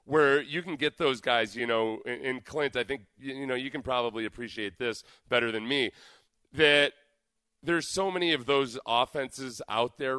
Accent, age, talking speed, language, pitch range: American, 30-49, 185 wpm, English, 110-140 Hz